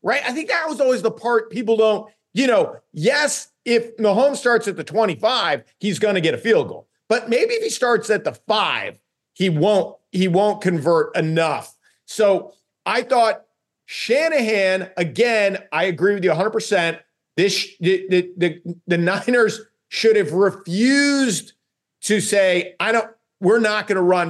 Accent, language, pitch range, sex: American, English, 165-225 Hz, male